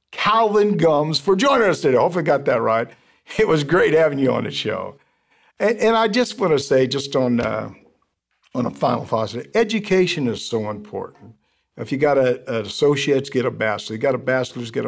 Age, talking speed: 50-69, 210 wpm